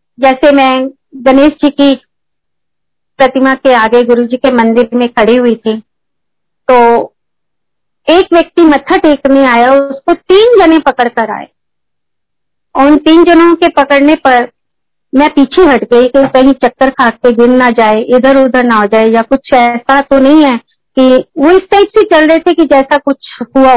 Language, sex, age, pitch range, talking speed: Hindi, female, 50-69, 250-340 Hz, 175 wpm